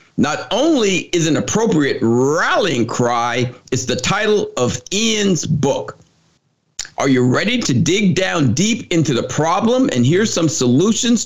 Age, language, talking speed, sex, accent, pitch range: 50-69, English, 145 wpm, male, American, 135-210 Hz